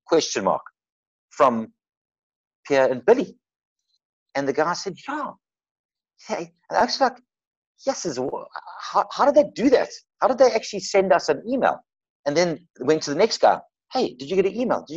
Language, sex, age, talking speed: English, male, 60-79, 175 wpm